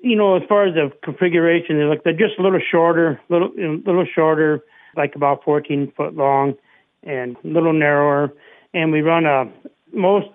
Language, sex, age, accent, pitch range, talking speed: English, male, 60-79, American, 135-155 Hz, 180 wpm